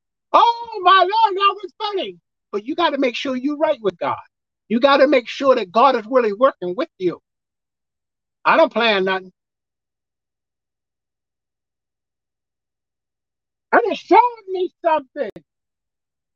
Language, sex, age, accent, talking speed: English, male, 50-69, American, 130 wpm